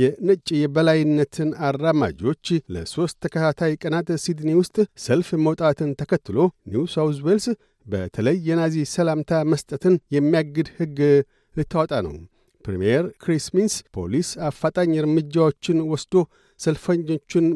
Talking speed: 80 wpm